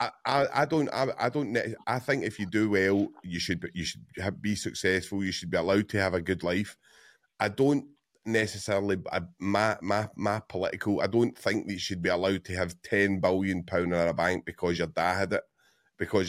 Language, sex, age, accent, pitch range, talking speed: English, male, 30-49, British, 95-110 Hz, 225 wpm